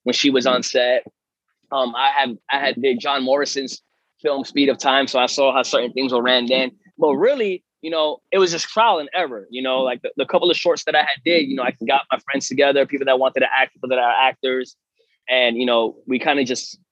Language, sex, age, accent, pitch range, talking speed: English, male, 20-39, American, 130-150 Hz, 250 wpm